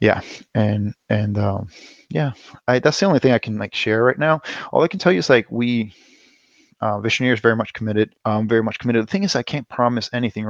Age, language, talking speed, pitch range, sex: 20-39, English, 235 wpm, 105-115 Hz, male